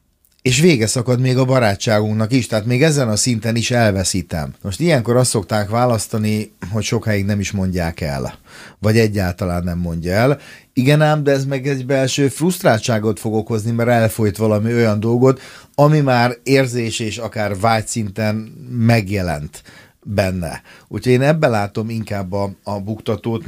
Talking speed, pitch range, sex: 160 wpm, 100-120 Hz, male